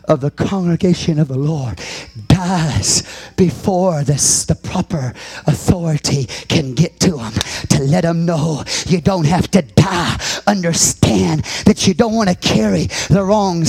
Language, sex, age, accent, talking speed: English, male, 40-59, American, 150 wpm